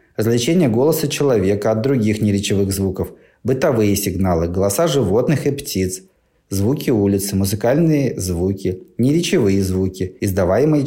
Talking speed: 110 wpm